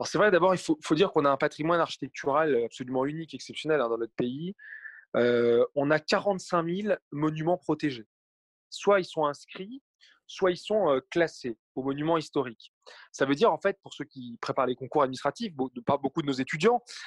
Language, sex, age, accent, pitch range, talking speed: French, male, 20-39, French, 140-185 Hz, 205 wpm